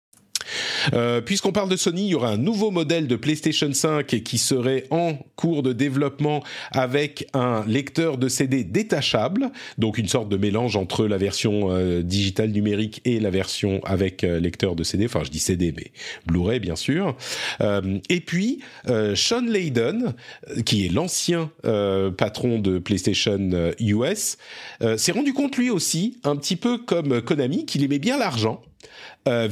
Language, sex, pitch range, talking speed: French, male, 95-145 Hz, 170 wpm